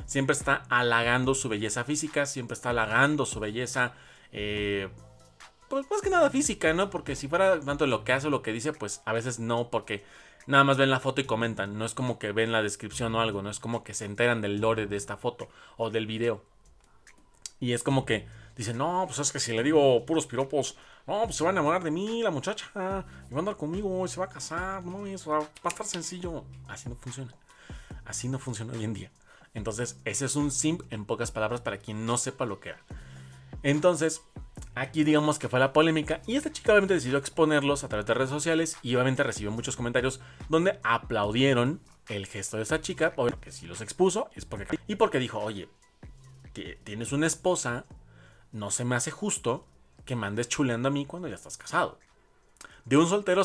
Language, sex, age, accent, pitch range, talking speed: Spanish, male, 30-49, Mexican, 115-155 Hz, 210 wpm